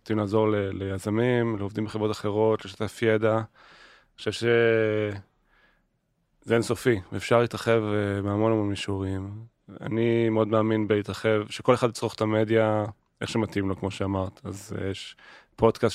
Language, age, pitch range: Hebrew, 20-39, 100-115 Hz